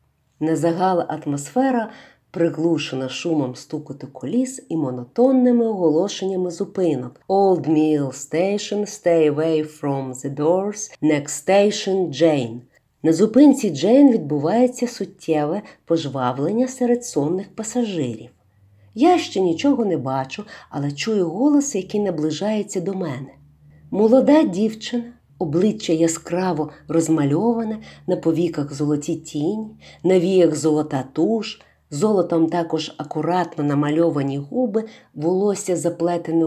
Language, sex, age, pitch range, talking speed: Ukrainian, female, 50-69, 150-215 Hz, 100 wpm